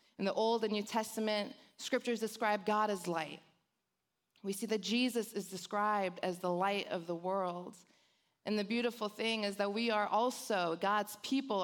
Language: English